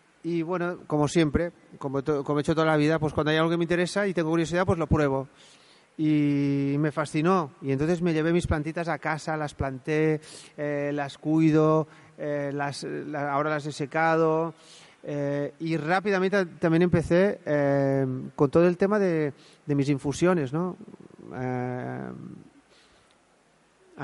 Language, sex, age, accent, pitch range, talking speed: Spanish, male, 30-49, Spanish, 145-175 Hz, 155 wpm